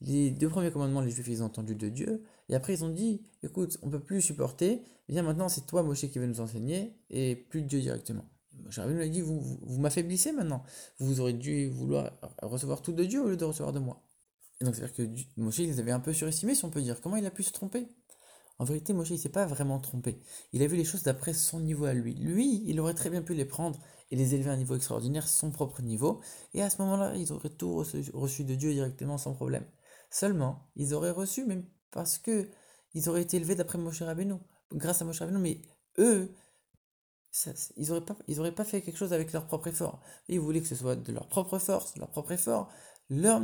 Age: 20-39